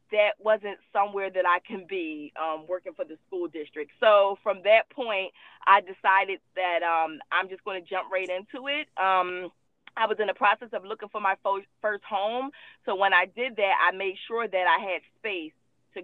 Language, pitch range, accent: English, 185-225 Hz, American